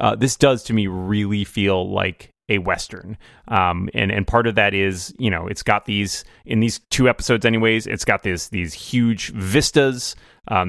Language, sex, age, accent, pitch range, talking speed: English, male, 30-49, American, 100-125 Hz, 190 wpm